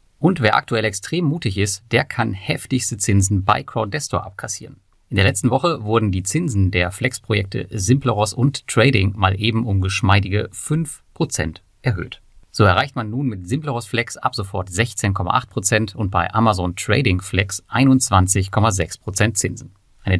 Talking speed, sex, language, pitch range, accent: 145 wpm, male, German, 95-125 Hz, German